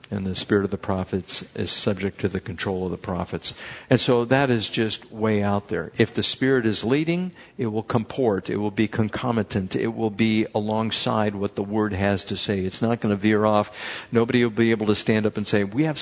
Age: 60-79